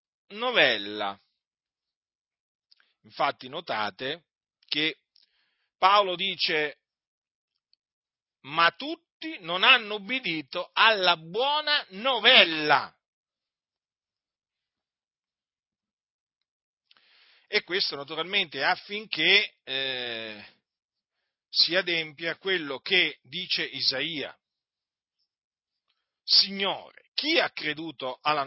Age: 40-59